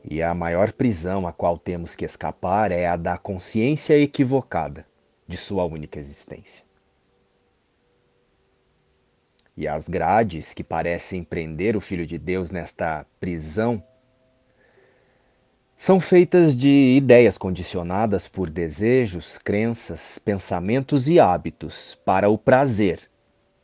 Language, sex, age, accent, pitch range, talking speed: Portuguese, male, 40-59, Brazilian, 80-110 Hz, 110 wpm